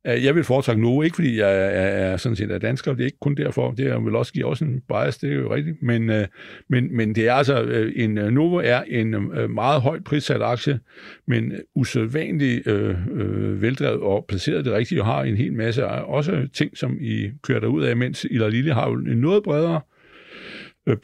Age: 60-79